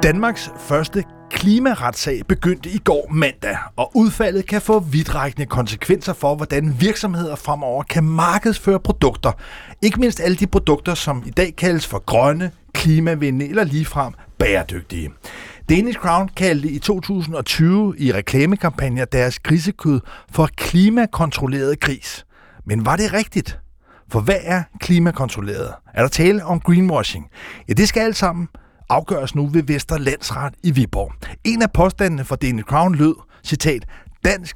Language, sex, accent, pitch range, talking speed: Danish, male, native, 135-195 Hz, 140 wpm